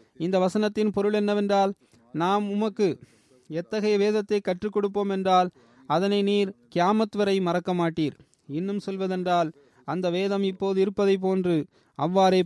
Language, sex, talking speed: Tamil, male, 115 wpm